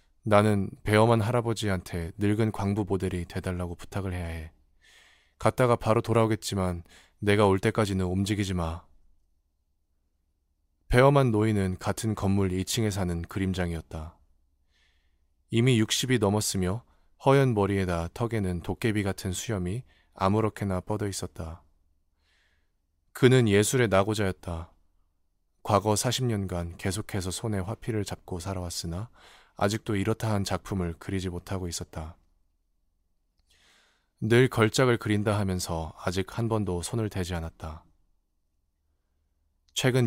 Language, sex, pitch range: Korean, male, 80-105 Hz